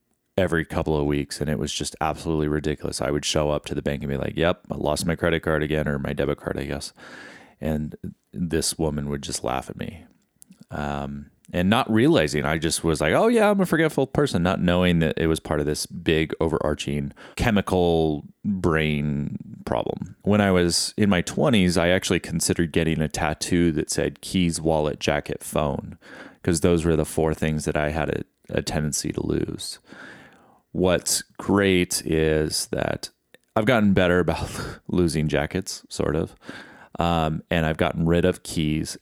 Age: 30-49